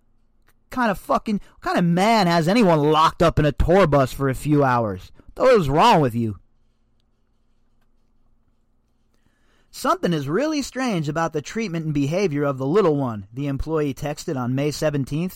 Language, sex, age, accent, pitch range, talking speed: English, male, 30-49, American, 120-195 Hz, 170 wpm